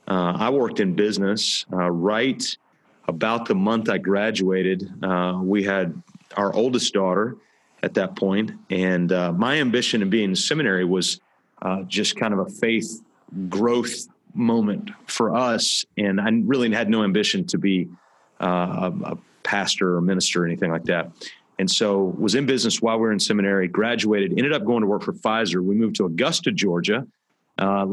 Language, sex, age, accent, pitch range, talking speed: English, male, 40-59, American, 95-120 Hz, 175 wpm